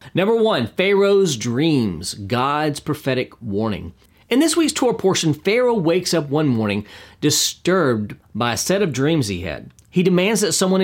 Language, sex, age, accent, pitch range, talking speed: English, male, 40-59, American, 110-170 Hz, 160 wpm